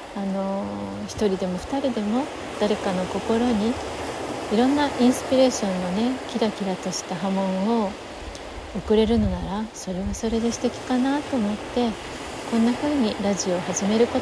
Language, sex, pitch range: Japanese, female, 195-245 Hz